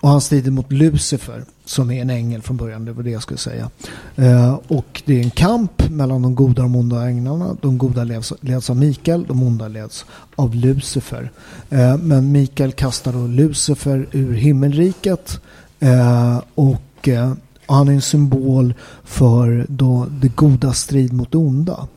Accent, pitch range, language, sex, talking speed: native, 125-145 Hz, Swedish, male, 170 wpm